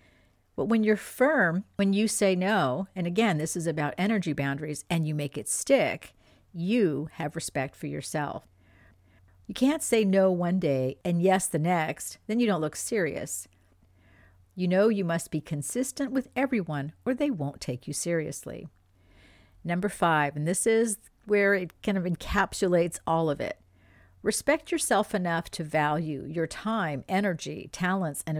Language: English